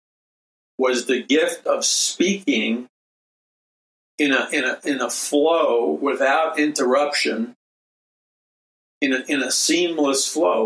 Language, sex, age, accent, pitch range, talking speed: English, male, 50-69, American, 115-145 Hz, 115 wpm